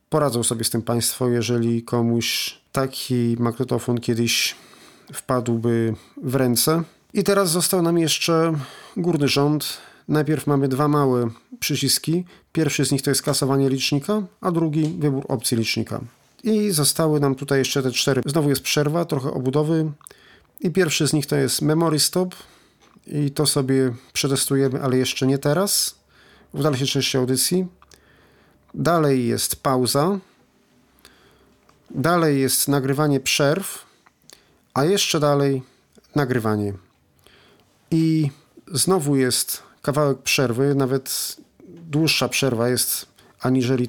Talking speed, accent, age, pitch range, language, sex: 125 wpm, native, 40-59, 125-155 Hz, Polish, male